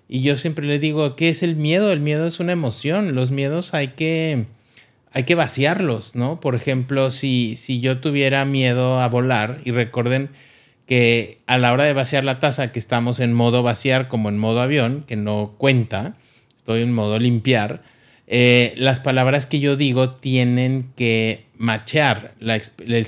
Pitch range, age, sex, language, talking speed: 110-130 Hz, 30-49, male, Spanish, 170 wpm